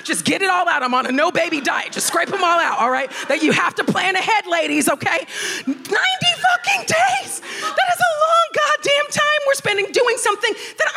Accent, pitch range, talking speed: American, 265-380 Hz, 220 wpm